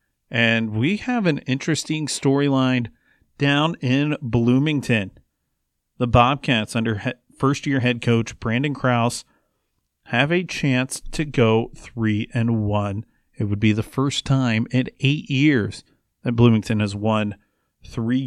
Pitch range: 110-130 Hz